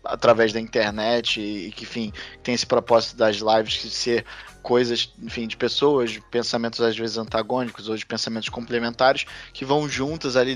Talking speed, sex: 175 wpm, male